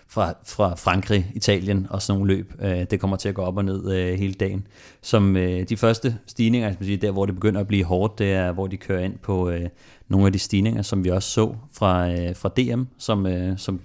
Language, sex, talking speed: Danish, male, 200 wpm